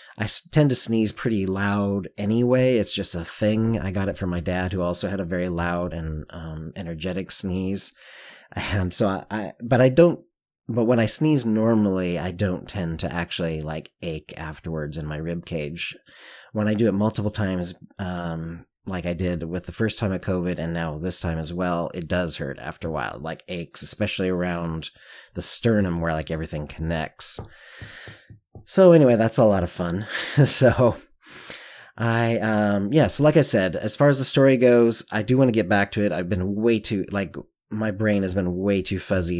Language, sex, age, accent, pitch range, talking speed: English, male, 30-49, American, 85-105 Hz, 200 wpm